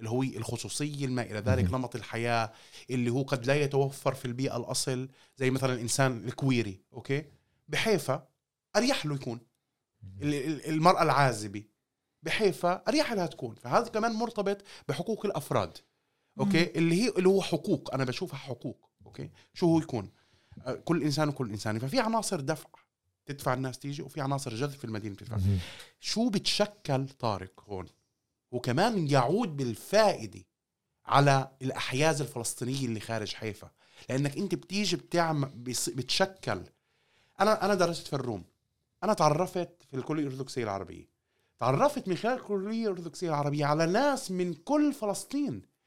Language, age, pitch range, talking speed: Arabic, 30-49, 120-175 Hz, 135 wpm